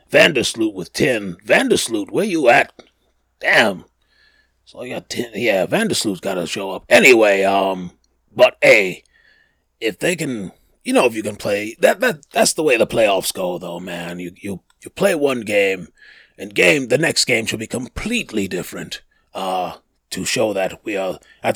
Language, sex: English, male